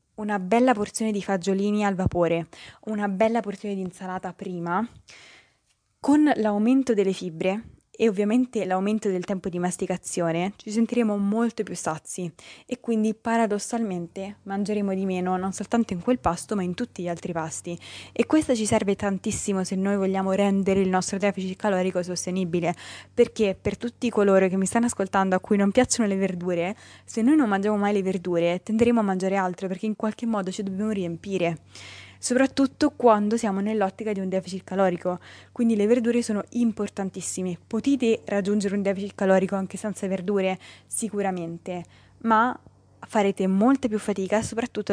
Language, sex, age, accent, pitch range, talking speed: Italian, female, 20-39, native, 185-220 Hz, 160 wpm